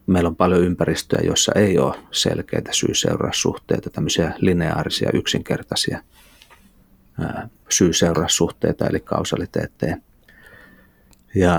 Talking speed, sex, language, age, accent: 80 wpm, male, Finnish, 30-49, native